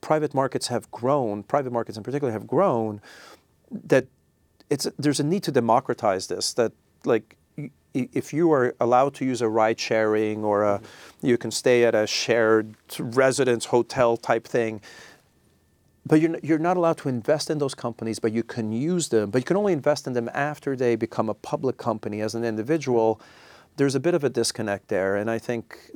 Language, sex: English, male